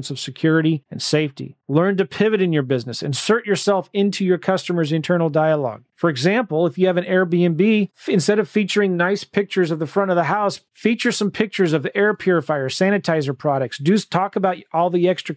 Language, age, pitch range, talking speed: English, 40-59, 150-195 Hz, 195 wpm